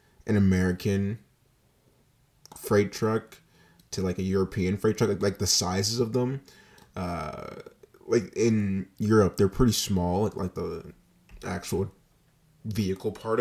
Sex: male